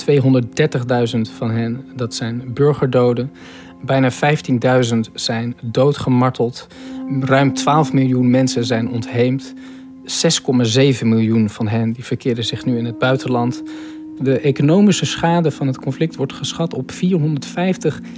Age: 40-59